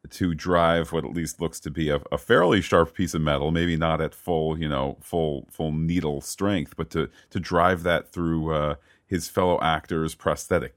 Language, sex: English, male